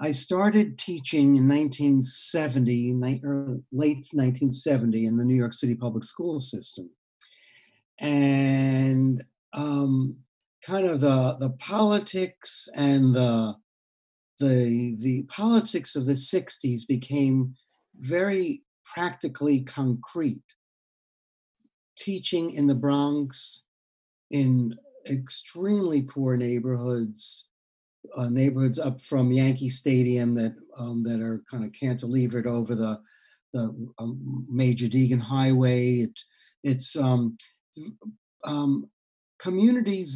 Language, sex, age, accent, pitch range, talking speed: English, male, 60-79, American, 125-150 Hz, 100 wpm